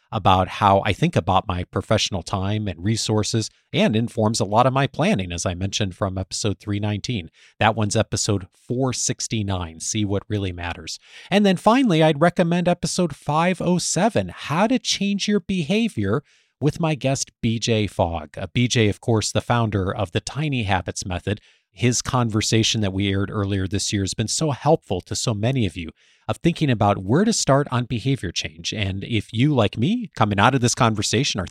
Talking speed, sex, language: 180 wpm, male, English